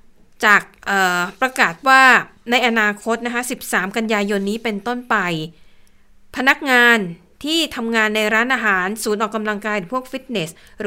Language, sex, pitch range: Thai, female, 195-245 Hz